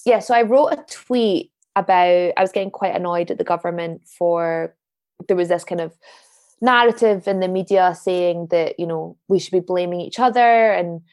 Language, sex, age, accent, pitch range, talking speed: English, female, 20-39, British, 170-220 Hz, 195 wpm